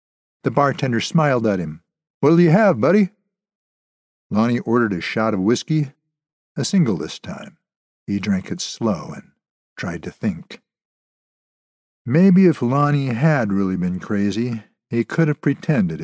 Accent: American